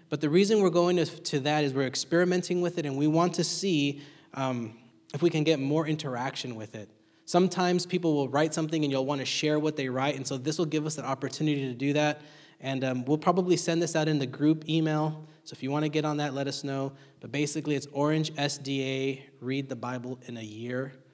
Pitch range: 130-160 Hz